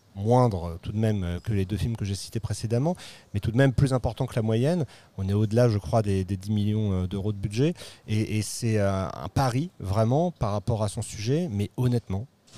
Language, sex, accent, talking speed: French, male, French, 225 wpm